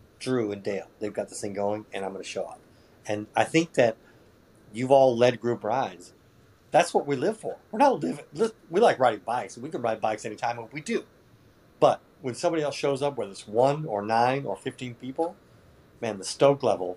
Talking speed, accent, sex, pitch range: 215 wpm, American, male, 105-130 Hz